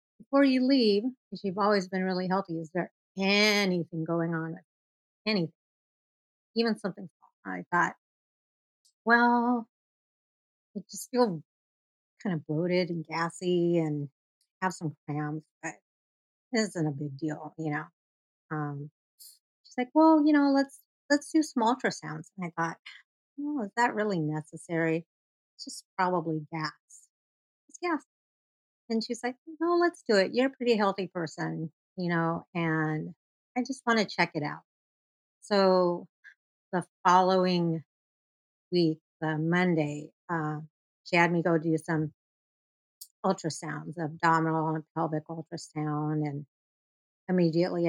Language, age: English, 50-69